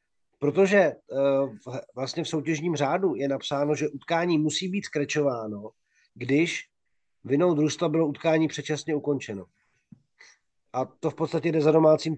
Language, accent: Czech, native